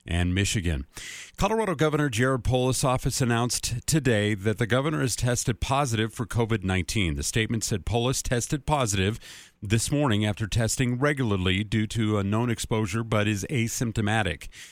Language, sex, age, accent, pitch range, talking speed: English, male, 40-59, American, 105-135 Hz, 150 wpm